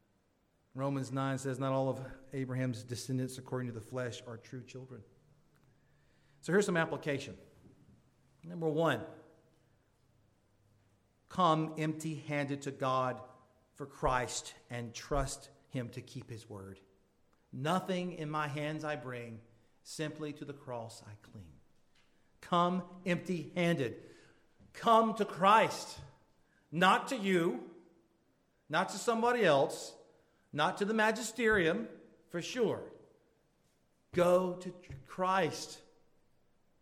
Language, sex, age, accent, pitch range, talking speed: English, male, 40-59, American, 130-175 Hz, 110 wpm